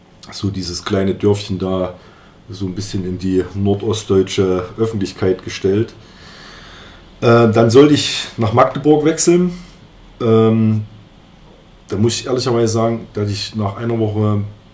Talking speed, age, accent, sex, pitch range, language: 125 wpm, 30-49, German, male, 95-115 Hz, German